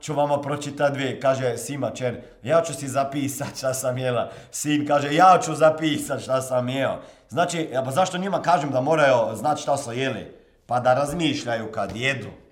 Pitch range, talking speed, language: 140-205 Hz, 175 wpm, Croatian